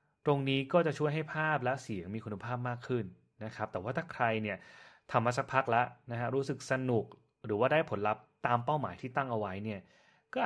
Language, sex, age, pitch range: Thai, male, 30-49, 105-130 Hz